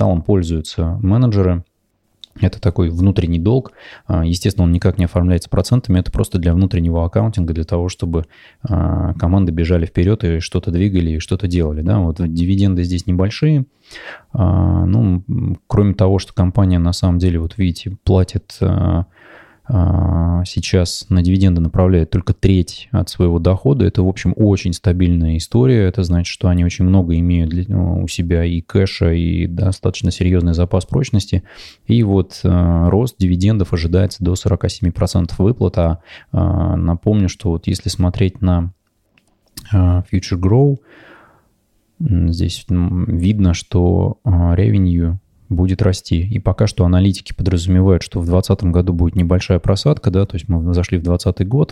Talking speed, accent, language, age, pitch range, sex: 135 wpm, native, Russian, 20-39, 90-100 Hz, male